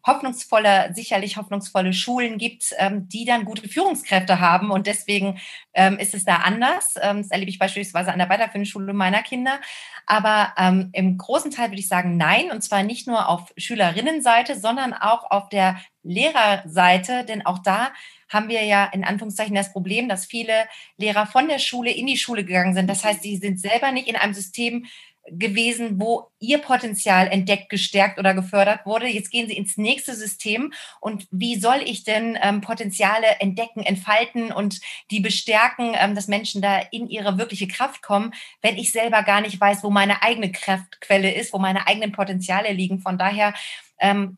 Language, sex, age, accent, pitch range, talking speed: German, female, 30-49, German, 195-230 Hz, 175 wpm